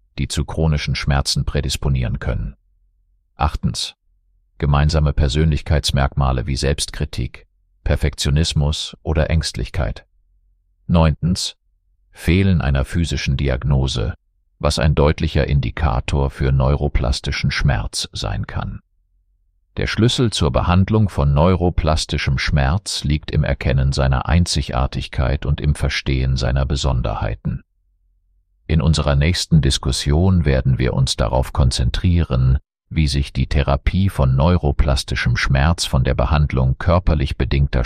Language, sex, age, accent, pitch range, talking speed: German, male, 50-69, German, 70-85 Hz, 105 wpm